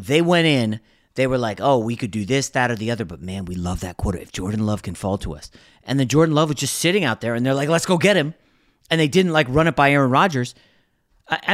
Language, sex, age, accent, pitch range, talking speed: English, male, 30-49, American, 115-160 Hz, 280 wpm